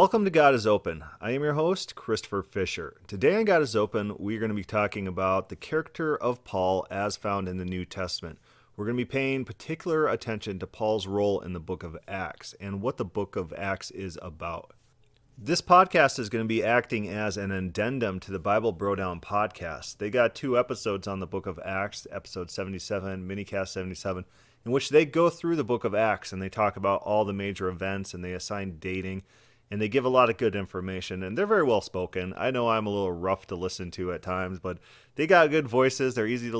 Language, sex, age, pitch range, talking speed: English, male, 30-49, 95-125 Hz, 225 wpm